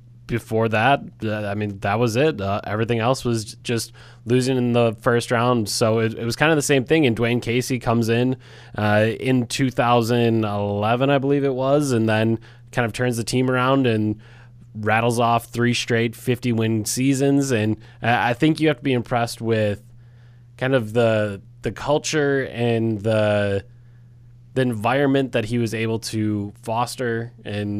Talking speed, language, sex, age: 170 wpm, English, male, 20-39